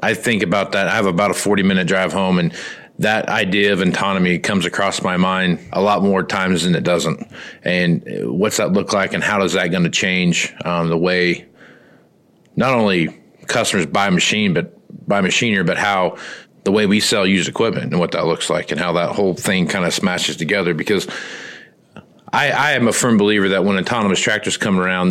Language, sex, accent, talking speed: English, male, American, 205 wpm